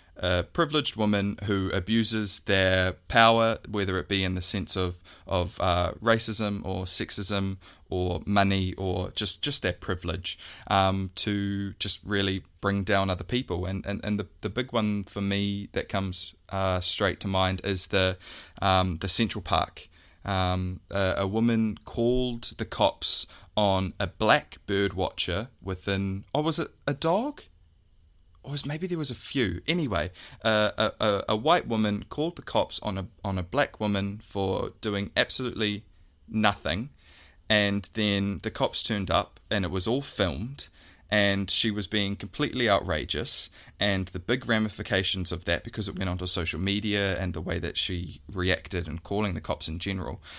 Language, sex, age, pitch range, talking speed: English, male, 20-39, 90-105 Hz, 165 wpm